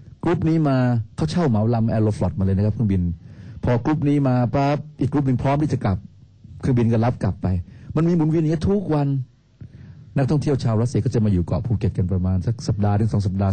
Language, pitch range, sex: Thai, 100-135 Hz, male